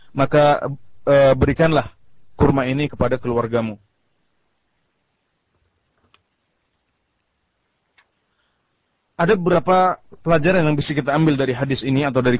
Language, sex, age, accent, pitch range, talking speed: Indonesian, male, 30-49, native, 120-145 Hz, 90 wpm